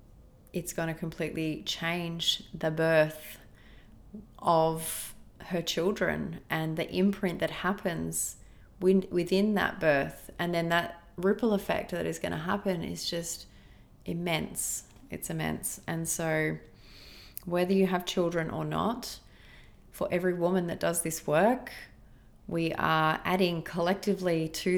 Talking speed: 130 wpm